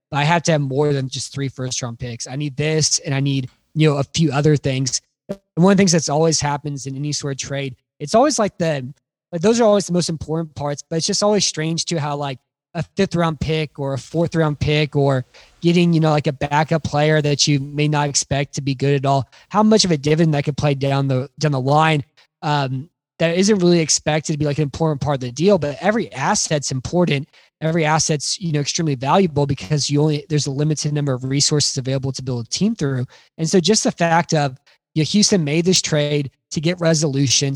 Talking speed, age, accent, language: 240 wpm, 20-39, American, English